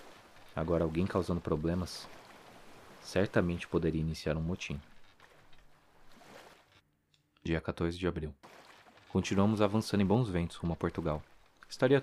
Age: 20-39